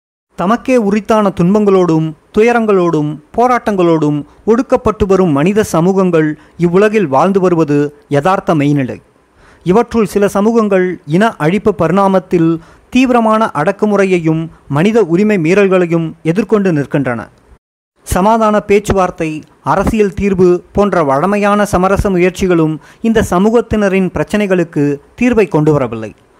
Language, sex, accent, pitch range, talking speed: Tamil, male, native, 160-210 Hz, 95 wpm